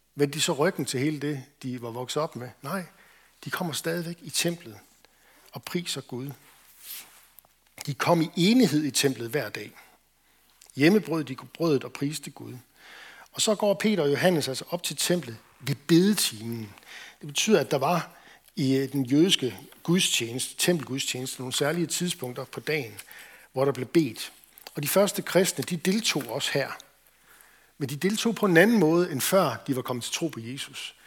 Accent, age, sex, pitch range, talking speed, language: native, 60-79, male, 130-170 Hz, 170 wpm, Danish